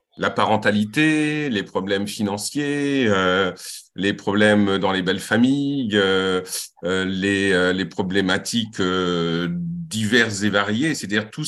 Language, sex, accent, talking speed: French, male, French, 120 wpm